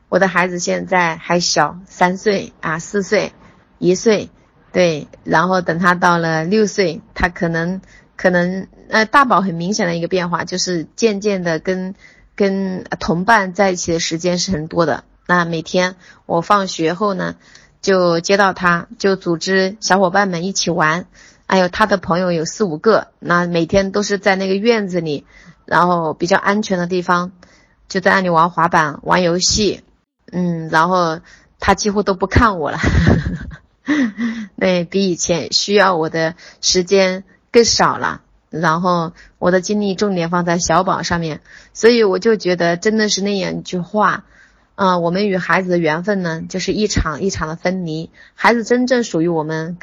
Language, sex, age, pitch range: Chinese, female, 30-49, 170-195 Hz